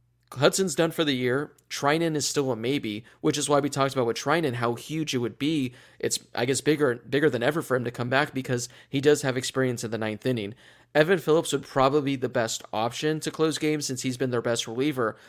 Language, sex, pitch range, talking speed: English, male, 125-145 Hz, 240 wpm